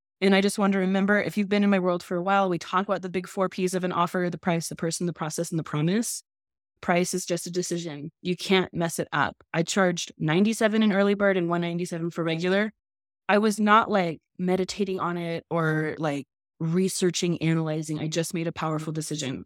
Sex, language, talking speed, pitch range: female, English, 220 wpm, 175-205 Hz